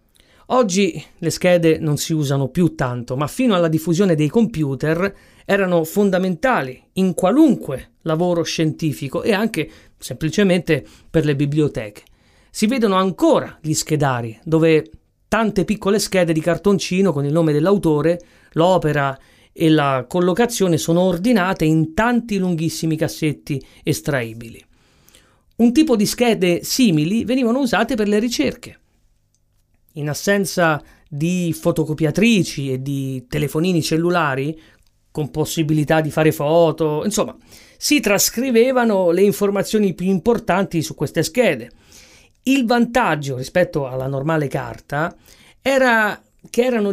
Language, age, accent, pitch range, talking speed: Italian, 40-59, native, 150-200 Hz, 120 wpm